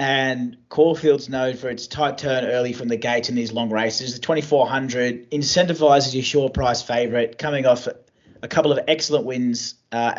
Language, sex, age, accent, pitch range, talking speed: English, male, 30-49, Australian, 120-150 Hz, 175 wpm